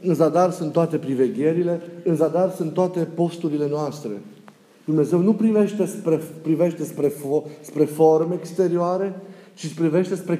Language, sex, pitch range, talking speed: Romanian, male, 165-220 Hz, 140 wpm